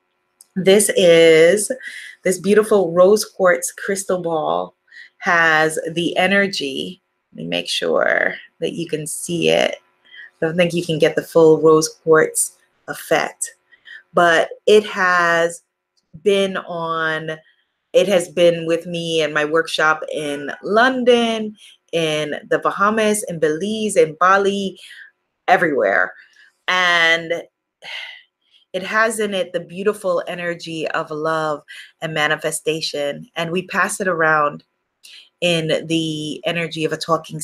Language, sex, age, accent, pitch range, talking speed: English, female, 20-39, American, 155-215 Hz, 125 wpm